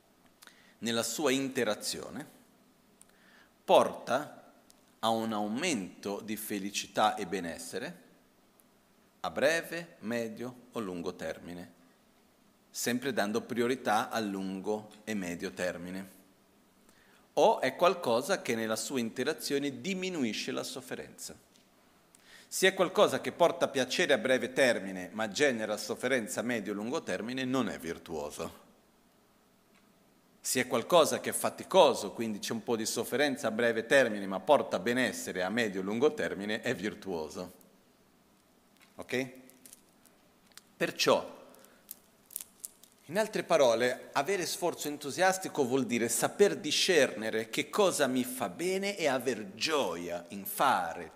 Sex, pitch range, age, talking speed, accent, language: male, 105-150 Hz, 40-59, 120 wpm, native, Italian